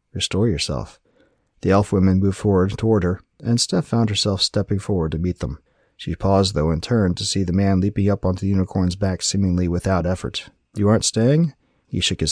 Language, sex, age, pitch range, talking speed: English, male, 30-49, 90-105 Hz, 205 wpm